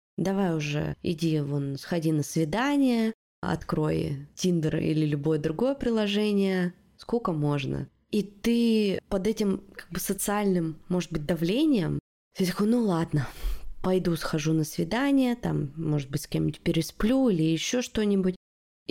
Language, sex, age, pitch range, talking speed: Russian, female, 20-39, 160-195 Hz, 135 wpm